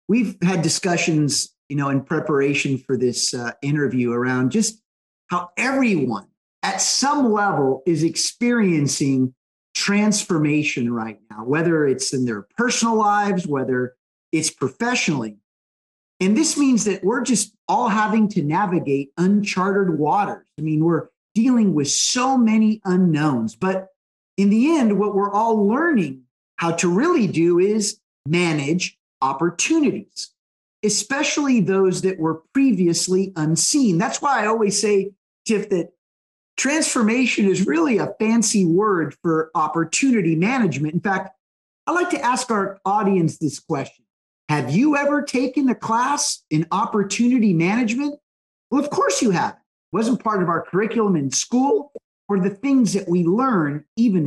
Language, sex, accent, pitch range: English, male, American, 155-225 Hz